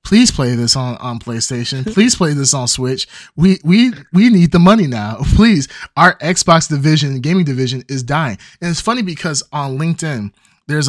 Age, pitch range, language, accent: 20-39, 125-175 Hz, English, American